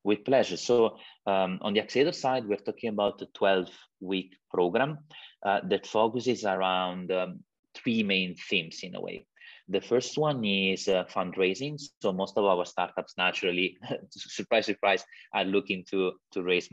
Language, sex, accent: English, male, Italian